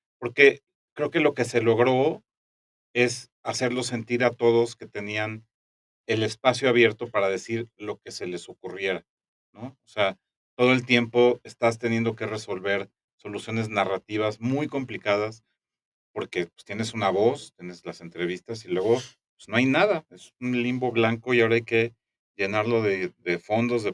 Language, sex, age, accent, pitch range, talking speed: Spanish, male, 40-59, Mexican, 105-125 Hz, 165 wpm